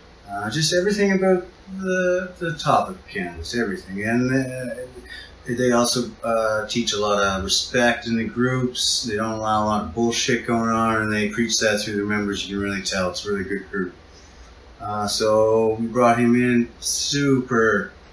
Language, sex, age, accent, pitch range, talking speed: English, male, 30-49, American, 105-130 Hz, 180 wpm